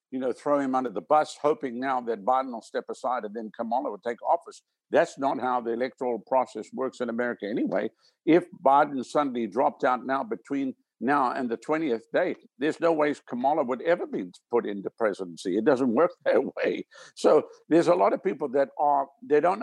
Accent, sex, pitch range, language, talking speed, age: American, male, 120-165 Hz, English, 205 wpm, 60-79